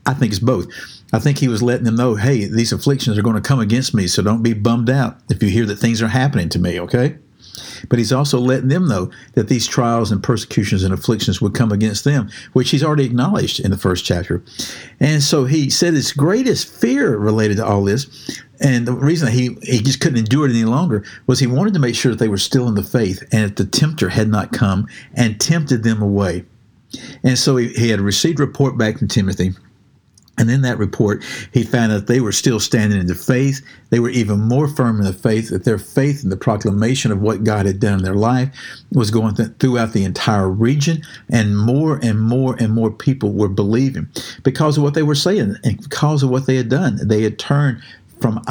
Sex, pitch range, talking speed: male, 105-135 Hz, 230 wpm